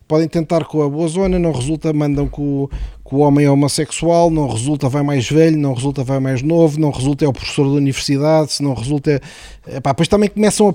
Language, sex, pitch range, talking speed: Portuguese, male, 120-160 Hz, 220 wpm